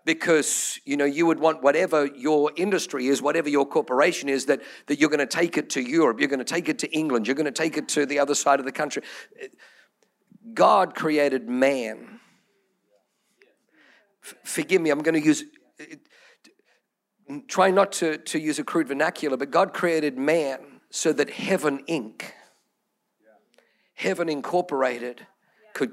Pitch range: 145-185 Hz